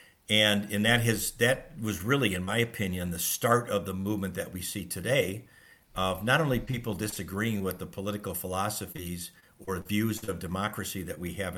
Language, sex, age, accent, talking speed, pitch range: English, male, 50-69, American, 180 wpm, 90-110 Hz